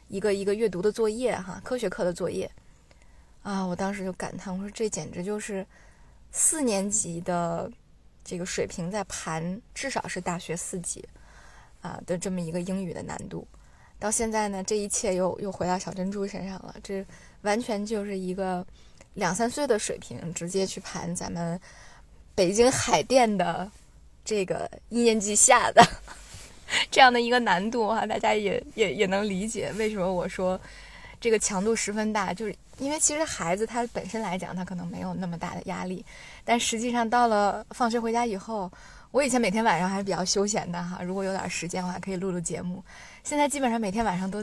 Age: 20-39